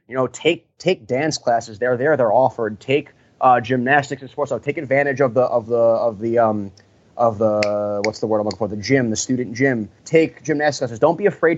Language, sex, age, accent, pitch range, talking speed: English, male, 20-39, American, 115-140 Hz, 230 wpm